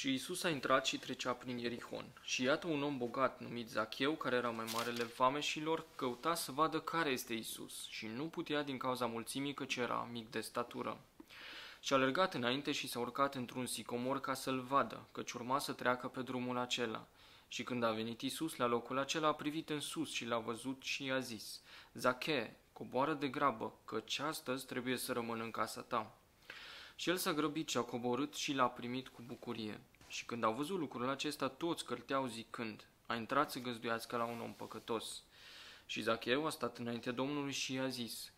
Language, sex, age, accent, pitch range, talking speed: Romanian, male, 20-39, native, 120-140 Hz, 190 wpm